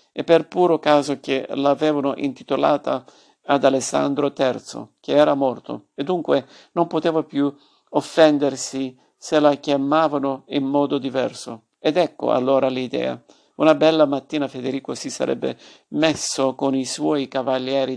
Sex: male